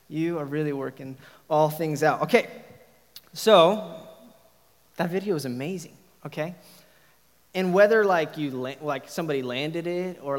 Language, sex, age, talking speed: English, male, 20-39, 140 wpm